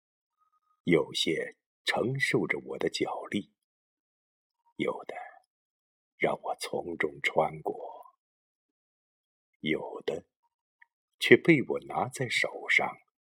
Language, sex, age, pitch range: Chinese, male, 50-69, 265-430 Hz